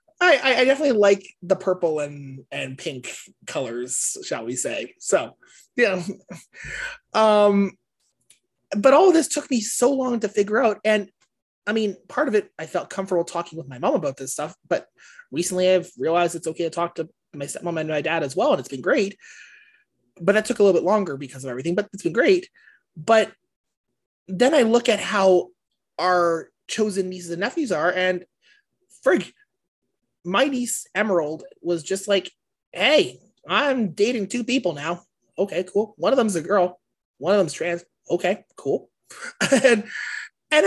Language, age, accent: English, 20-39, American